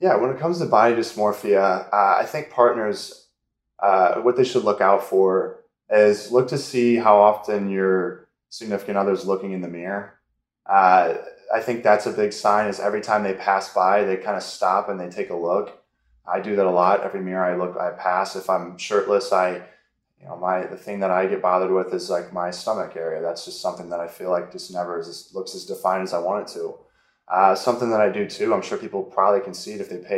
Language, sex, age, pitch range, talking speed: English, male, 10-29, 95-120 Hz, 235 wpm